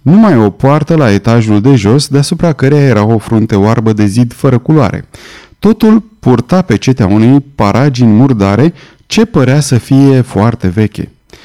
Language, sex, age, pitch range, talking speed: Romanian, male, 30-49, 105-150 Hz, 150 wpm